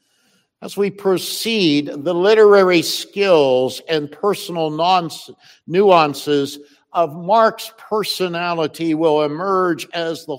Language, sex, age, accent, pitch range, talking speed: English, male, 60-79, American, 150-190 Hz, 90 wpm